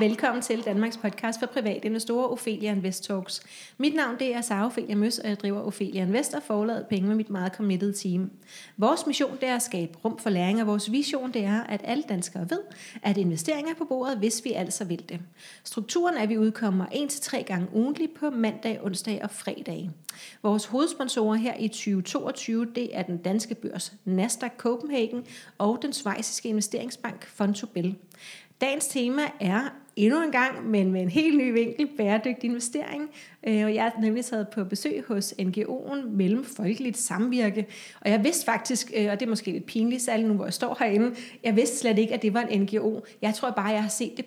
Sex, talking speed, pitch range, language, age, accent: female, 200 wpm, 205-250 Hz, Danish, 30-49, native